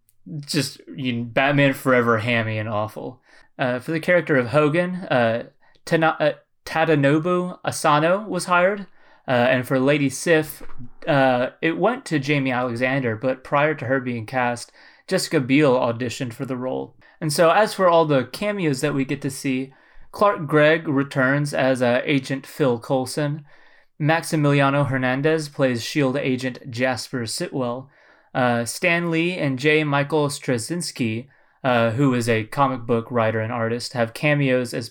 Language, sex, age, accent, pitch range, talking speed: English, male, 20-39, American, 125-155 Hz, 155 wpm